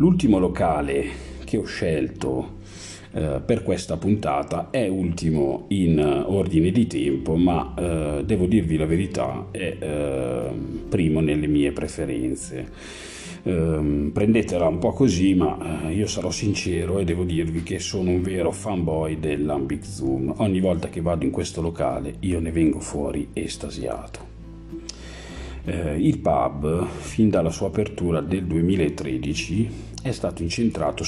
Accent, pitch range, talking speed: native, 75-95 Hz, 125 wpm